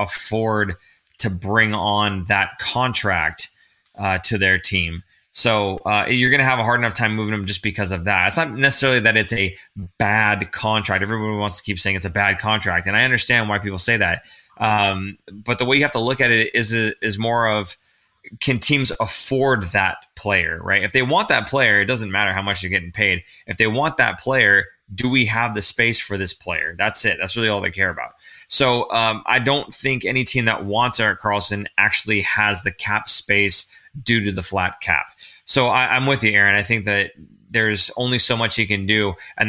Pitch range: 100-115 Hz